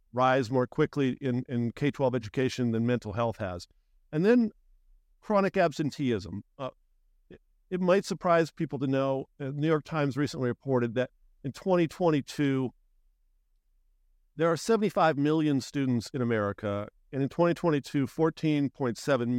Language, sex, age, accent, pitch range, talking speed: English, male, 50-69, American, 120-150 Hz, 130 wpm